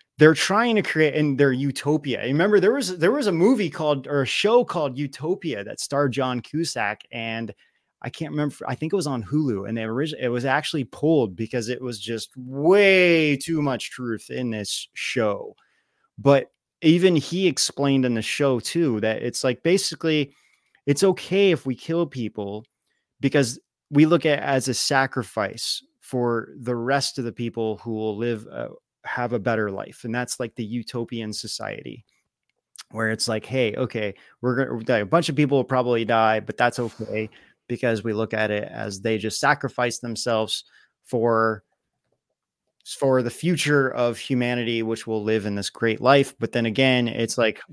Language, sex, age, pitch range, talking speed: English, male, 20-39, 115-150 Hz, 180 wpm